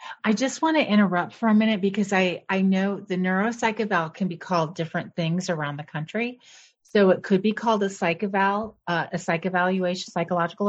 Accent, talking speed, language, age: American, 200 wpm, English, 30-49